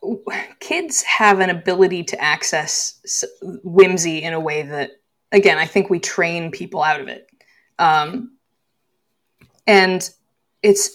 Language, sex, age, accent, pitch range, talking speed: English, female, 20-39, American, 165-250 Hz, 125 wpm